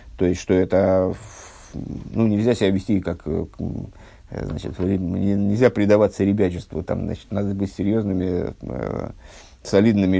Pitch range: 95-125 Hz